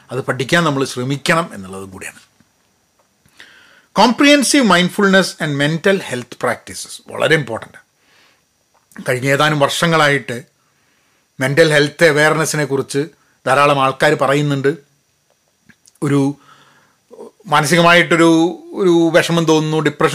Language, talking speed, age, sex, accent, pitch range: Malayalam, 90 wpm, 40-59, male, native, 135-170 Hz